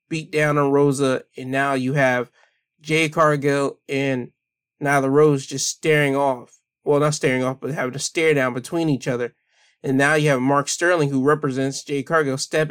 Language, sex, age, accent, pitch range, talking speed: English, male, 20-39, American, 130-160 Hz, 190 wpm